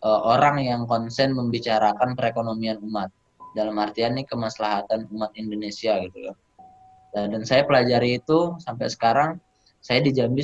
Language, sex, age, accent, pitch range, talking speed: Indonesian, male, 20-39, native, 110-130 Hz, 130 wpm